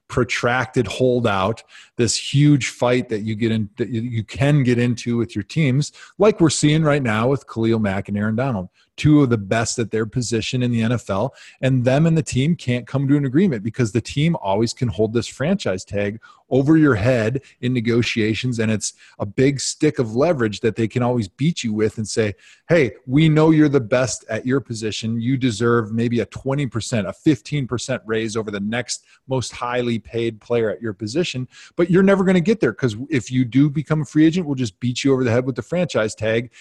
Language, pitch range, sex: English, 110-135 Hz, male